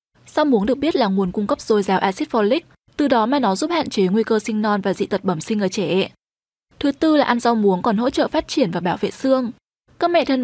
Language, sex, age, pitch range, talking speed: Vietnamese, female, 10-29, 205-270 Hz, 275 wpm